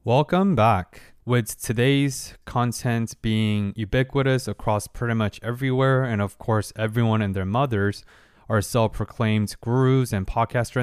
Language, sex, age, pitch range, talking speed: English, male, 20-39, 105-135 Hz, 125 wpm